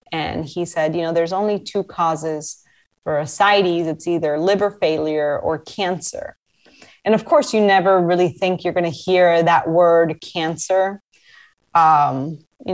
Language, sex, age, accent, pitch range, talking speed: English, female, 20-39, American, 165-190 Hz, 155 wpm